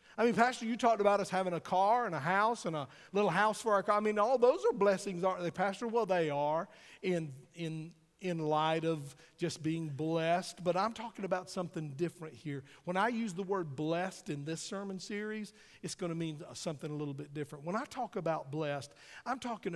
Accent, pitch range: American, 155-205 Hz